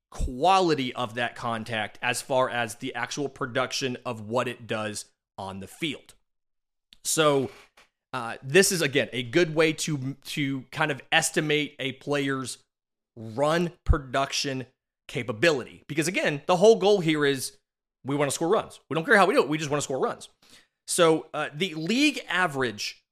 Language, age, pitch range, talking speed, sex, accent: English, 30-49, 130-175 Hz, 170 wpm, male, American